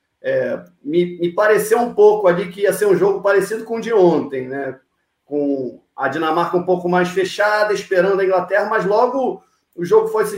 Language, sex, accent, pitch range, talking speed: Portuguese, male, Brazilian, 150-210 Hz, 190 wpm